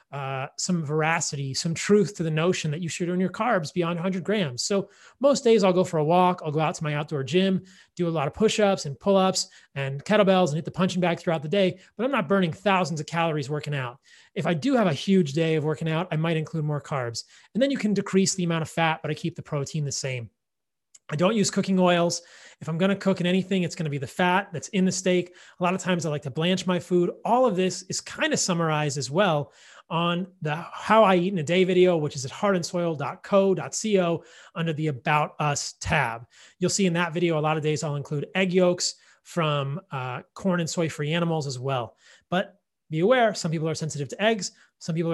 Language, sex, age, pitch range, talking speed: English, male, 30-49, 155-190 Hz, 240 wpm